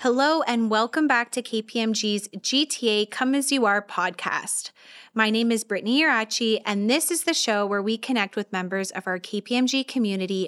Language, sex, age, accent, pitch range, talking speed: English, female, 20-39, American, 200-245 Hz, 180 wpm